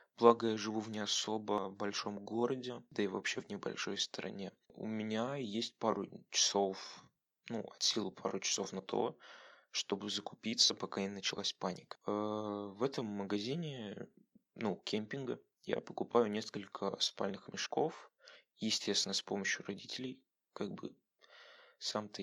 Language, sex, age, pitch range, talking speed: Russian, male, 20-39, 100-115 Hz, 140 wpm